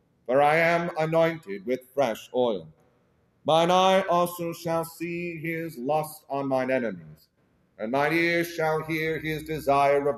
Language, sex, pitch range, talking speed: English, male, 125-165 Hz, 145 wpm